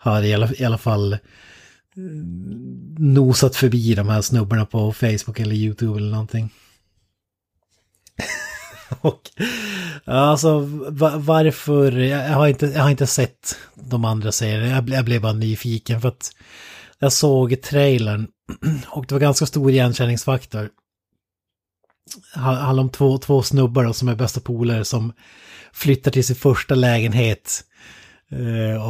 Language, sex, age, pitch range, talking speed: Swedish, male, 30-49, 110-135 Hz, 130 wpm